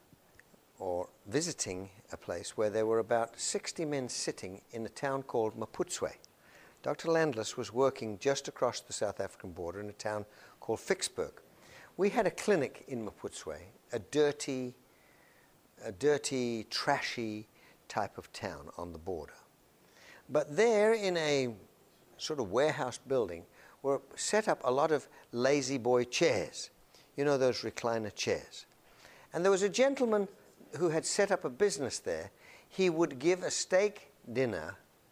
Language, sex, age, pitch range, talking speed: English, male, 60-79, 120-185 Hz, 150 wpm